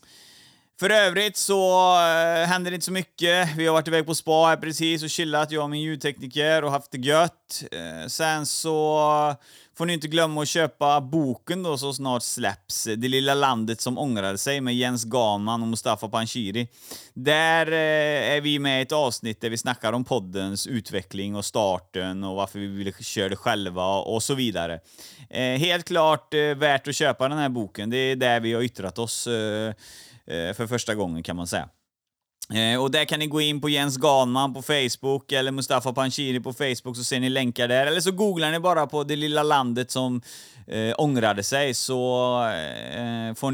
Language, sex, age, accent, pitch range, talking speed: Swedish, male, 30-49, native, 110-150 Hz, 190 wpm